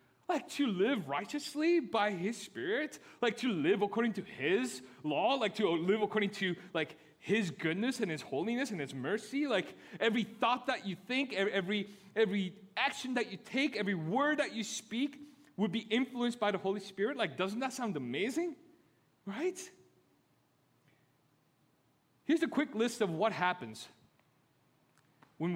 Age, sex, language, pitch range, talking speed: 30-49, male, English, 185-265 Hz, 155 wpm